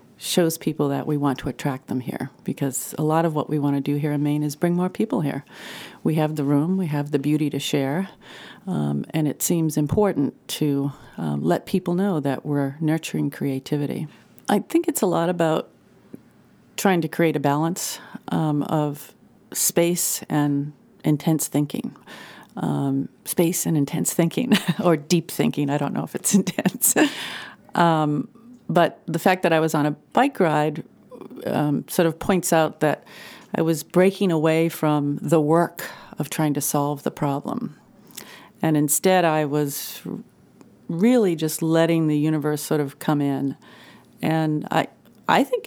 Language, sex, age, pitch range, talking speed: English, female, 40-59, 145-175 Hz, 165 wpm